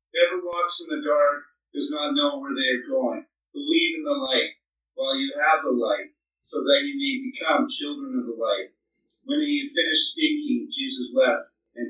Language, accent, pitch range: English, American, 255-300 Hz